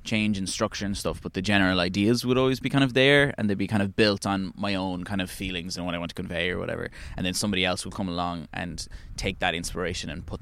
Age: 10-29